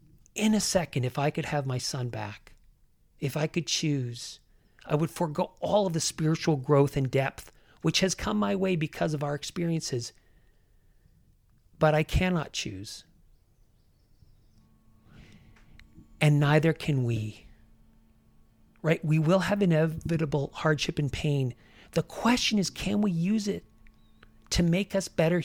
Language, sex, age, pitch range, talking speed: English, male, 40-59, 120-170 Hz, 140 wpm